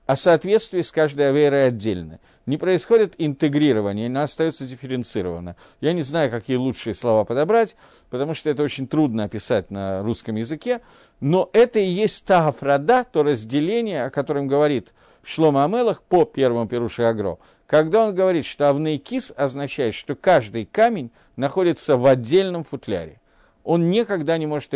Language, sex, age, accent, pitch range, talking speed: Russian, male, 50-69, native, 115-180 Hz, 150 wpm